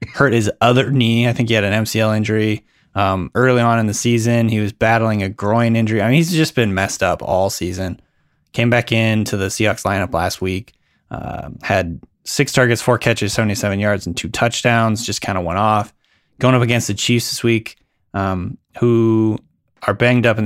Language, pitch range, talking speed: English, 100-120 Hz, 200 wpm